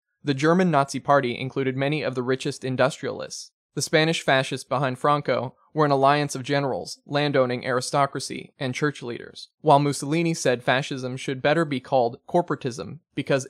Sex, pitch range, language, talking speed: male, 130-150 Hz, English, 155 wpm